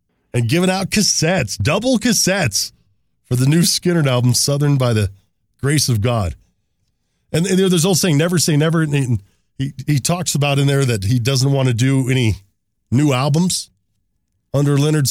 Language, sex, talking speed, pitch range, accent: English, male, 170 wpm, 105-150 Hz, American